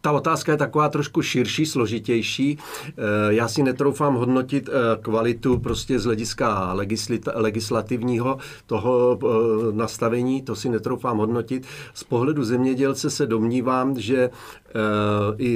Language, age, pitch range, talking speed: English, 40-59, 110-130 Hz, 110 wpm